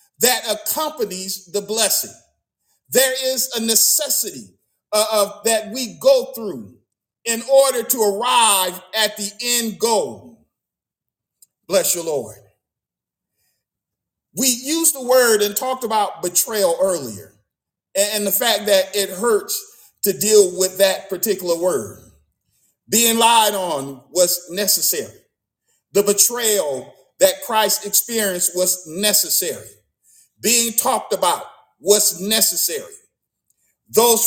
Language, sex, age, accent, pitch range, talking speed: English, male, 40-59, American, 195-250 Hz, 115 wpm